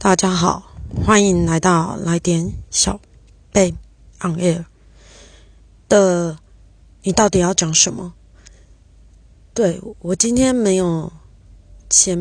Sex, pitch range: female, 145-195 Hz